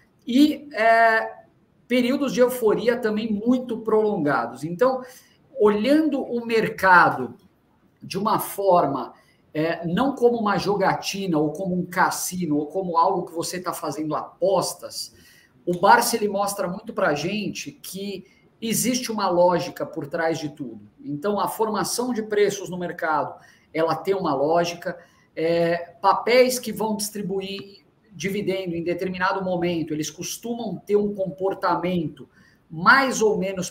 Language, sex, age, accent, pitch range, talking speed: Portuguese, male, 50-69, Brazilian, 170-225 Hz, 125 wpm